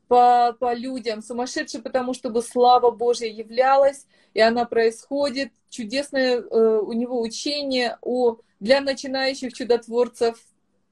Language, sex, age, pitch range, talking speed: Russian, female, 30-49, 220-255 Hz, 120 wpm